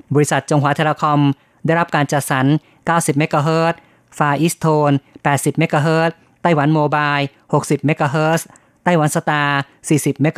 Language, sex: Thai, female